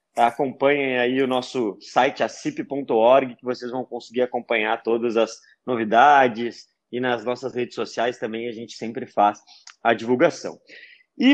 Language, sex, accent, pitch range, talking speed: Portuguese, male, Brazilian, 130-170 Hz, 145 wpm